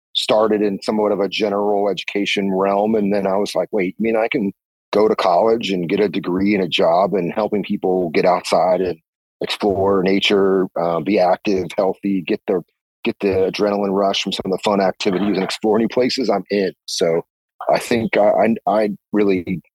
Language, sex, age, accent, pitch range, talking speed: English, male, 40-59, American, 90-105 Hz, 195 wpm